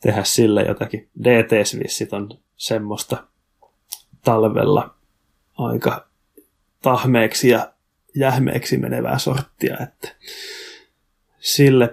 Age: 20-39